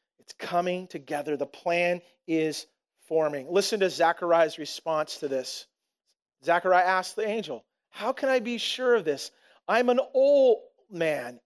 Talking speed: 145 wpm